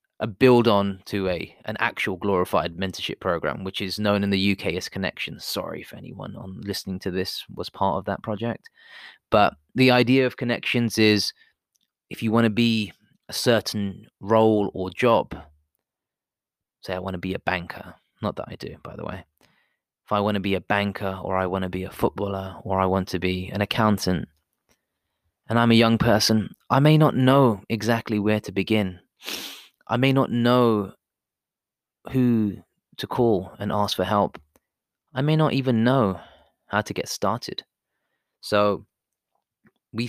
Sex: male